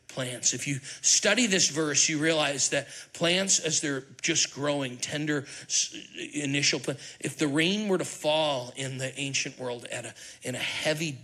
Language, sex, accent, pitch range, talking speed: English, male, American, 130-155 Hz, 165 wpm